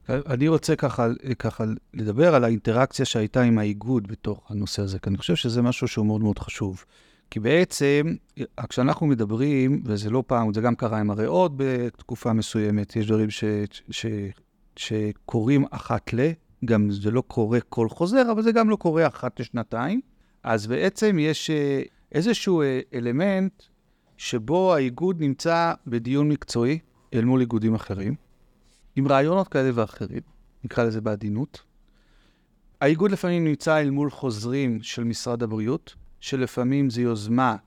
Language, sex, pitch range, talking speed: Hebrew, male, 110-155 Hz, 145 wpm